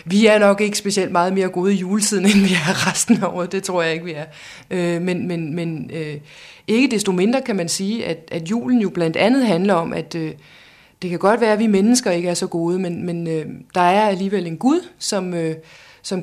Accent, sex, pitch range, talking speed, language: native, female, 170-200 Hz, 215 wpm, Danish